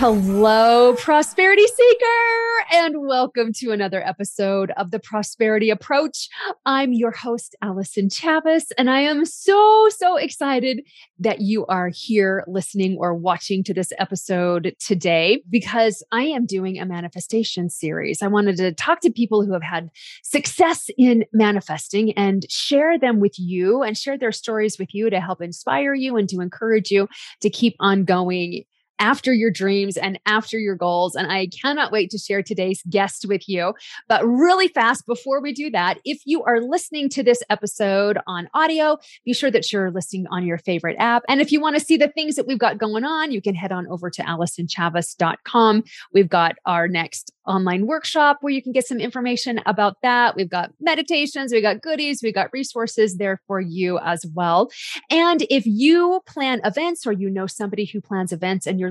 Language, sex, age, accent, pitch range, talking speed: English, female, 30-49, American, 190-270 Hz, 185 wpm